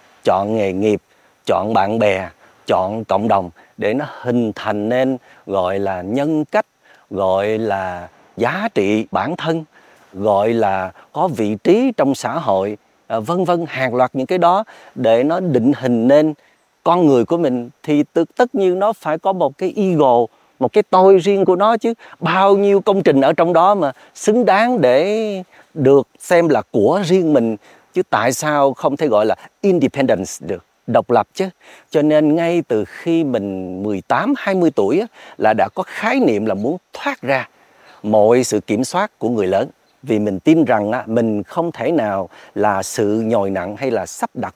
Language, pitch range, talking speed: Vietnamese, 110-185 Hz, 180 wpm